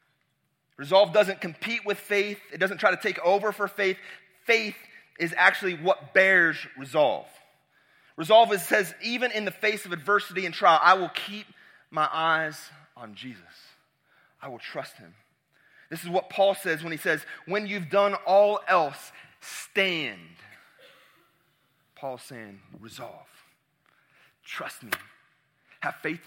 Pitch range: 140-185 Hz